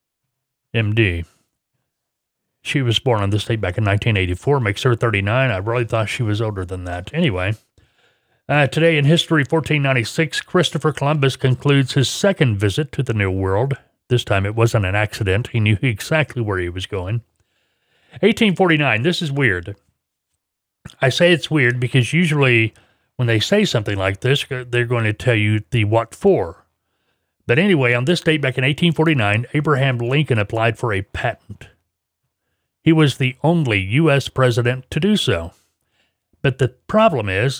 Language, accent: English, American